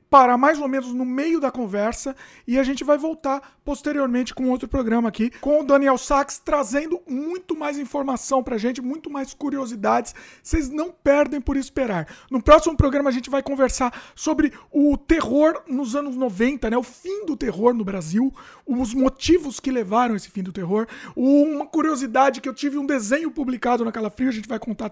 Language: Portuguese